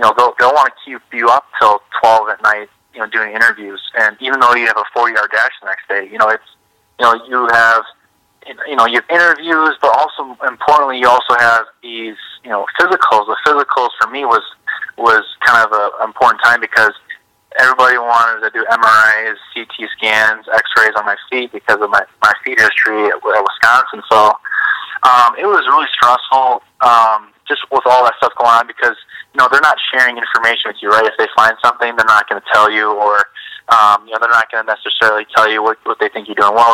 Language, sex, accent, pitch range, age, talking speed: English, male, American, 110-120 Hz, 20-39, 220 wpm